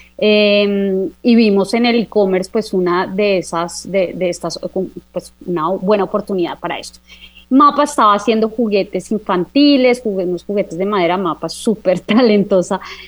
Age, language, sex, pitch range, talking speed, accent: 20-39, Spanish, female, 190-230 Hz, 140 wpm, Colombian